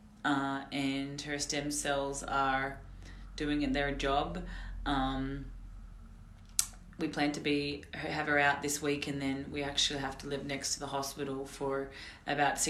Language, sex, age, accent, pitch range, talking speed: English, female, 30-49, Australian, 135-145 Hz, 155 wpm